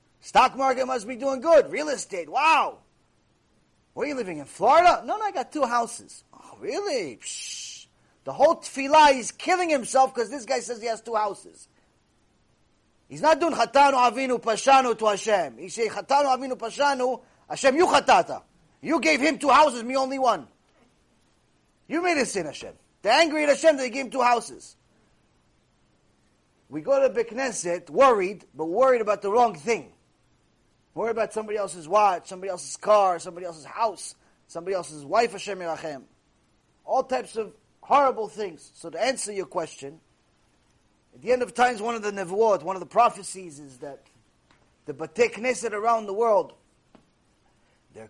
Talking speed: 170 wpm